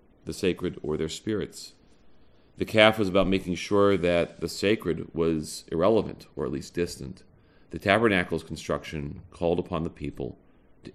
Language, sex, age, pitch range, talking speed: English, male, 40-59, 80-105 Hz, 155 wpm